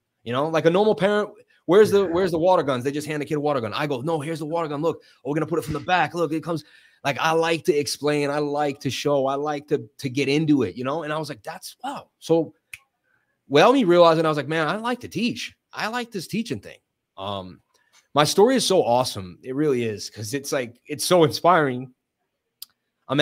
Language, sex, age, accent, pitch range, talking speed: English, male, 30-49, American, 125-165 Hz, 250 wpm